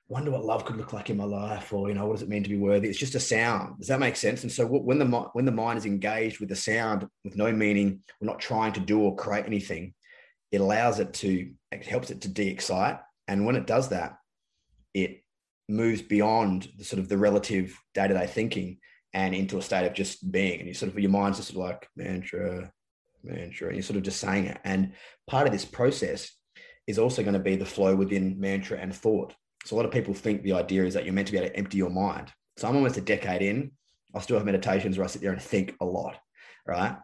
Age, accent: 20-39, Australian